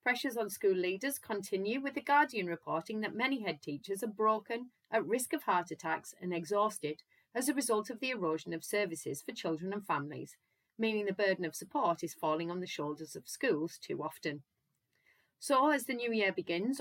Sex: female